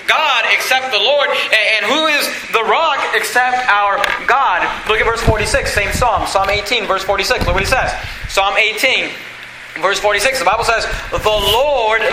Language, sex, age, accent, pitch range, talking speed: English, male, 30-49, American, 185-225 Hz, 175 wpm